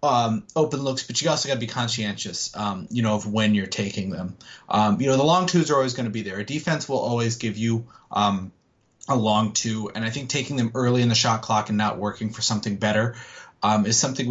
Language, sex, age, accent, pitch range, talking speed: English, male, 20-39, American, 110-140 Hz, 245 wpm